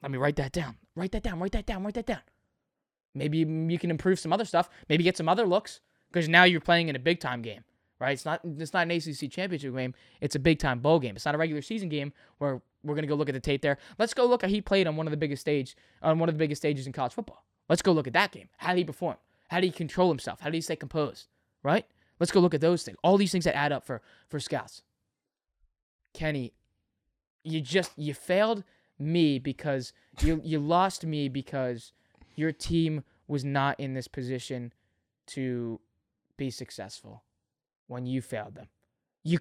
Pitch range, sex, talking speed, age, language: 130-200 Hz, male, 225 wpm, 20-39, English